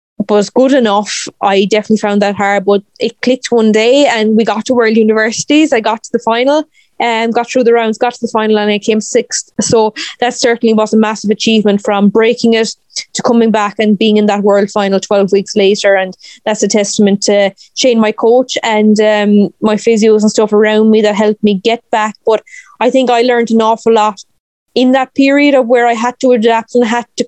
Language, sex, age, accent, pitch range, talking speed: English, female, 20-39, Irish, 210-235 Hz, 220 wpm